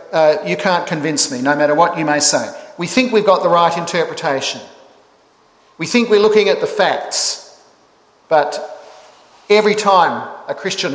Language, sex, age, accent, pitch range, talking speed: English, male, 50-69, Australian, 155-195 Hz, 165 wpm